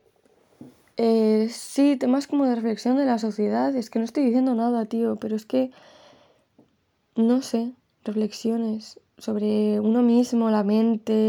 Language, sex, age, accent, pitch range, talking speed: Spanish, female, 20-39, Spanish, 200-230 Hz, 145 wpm